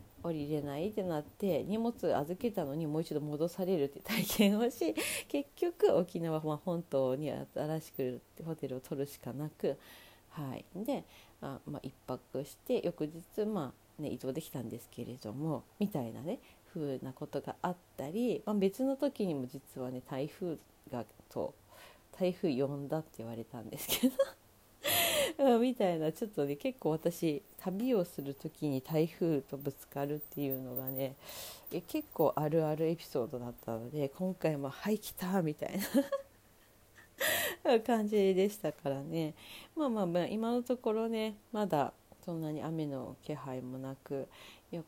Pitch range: 135-195 Hz